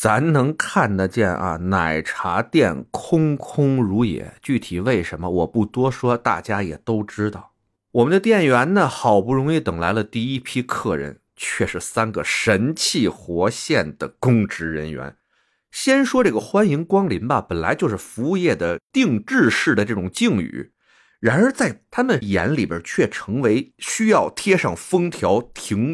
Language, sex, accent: Chinese, male, native